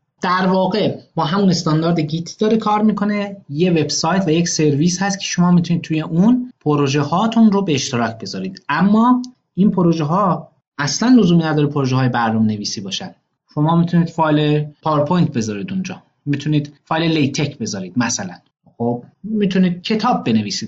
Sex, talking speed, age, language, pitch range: male, 150 wpm, 30-49, Persian, 135-175 Hz